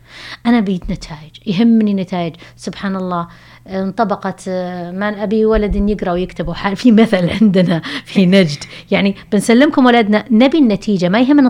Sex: female